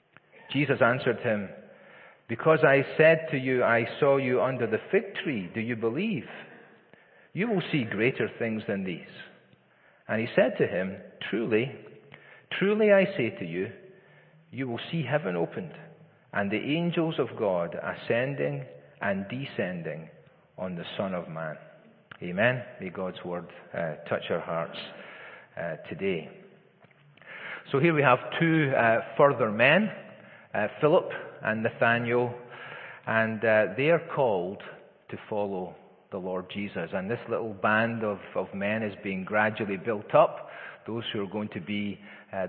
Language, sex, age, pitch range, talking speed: English, male, 40-59, 100-145 Hz, 150 wpm